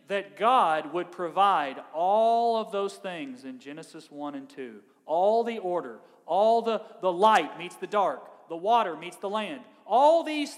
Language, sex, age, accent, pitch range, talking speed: English, male, 40-59, American, 200-290 Hz, 170 wpm